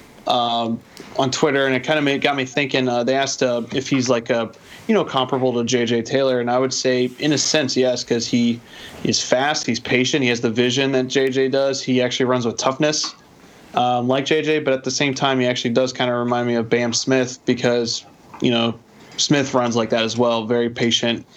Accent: American